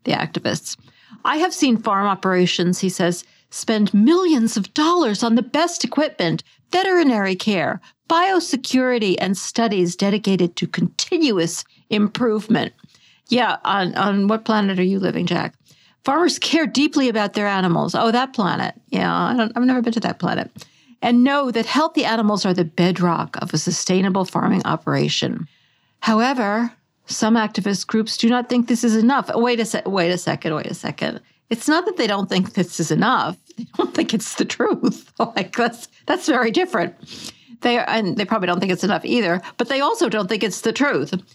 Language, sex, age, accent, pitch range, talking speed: English, female, 50-69, American, 190-255 Hz, 175 wpm